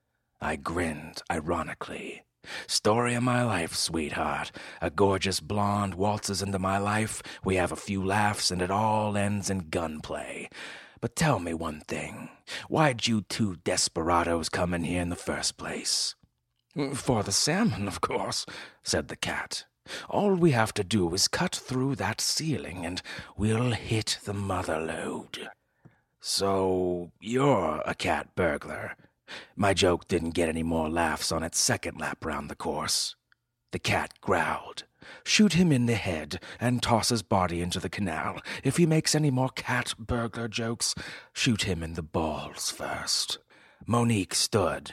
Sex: male